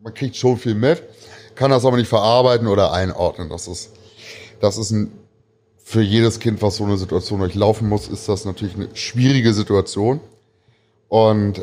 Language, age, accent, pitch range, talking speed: German, 30-49, German, 100-115 Hz, 170 wpm